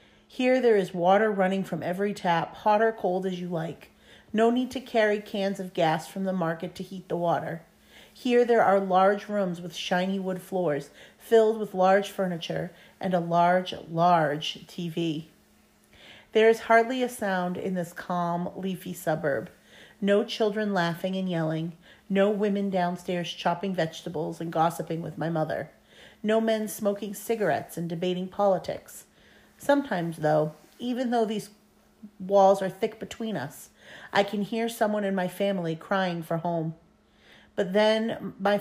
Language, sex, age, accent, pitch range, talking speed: English, female, 40-59, American, 175-210 Hz, 155 wpm